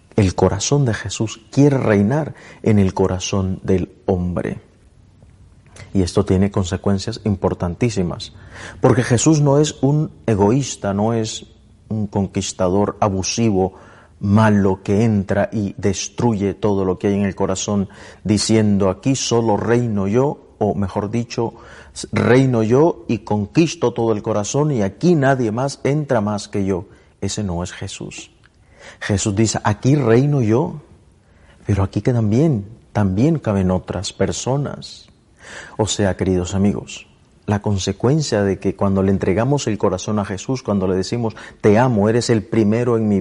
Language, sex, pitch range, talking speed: Spanish, male, 95-115 Hz, 145 wpm